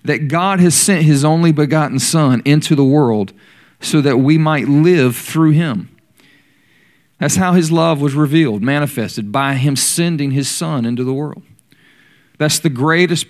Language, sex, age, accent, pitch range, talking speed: English, male, 40-59, American, 130-160 Hz, 165 wpm